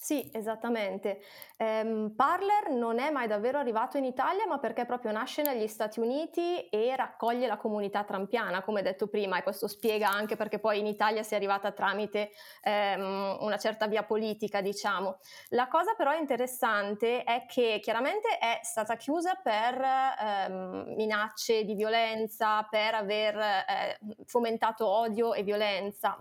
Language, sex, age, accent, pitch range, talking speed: Italian, female, 20-39, native, 205-255 Hz, 150 wpm